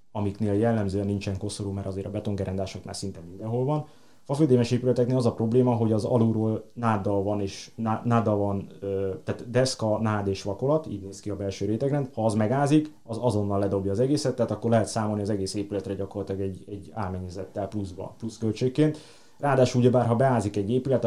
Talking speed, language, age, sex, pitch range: 185 wpm, Hungarian, 30-49, male, 100-115 Hz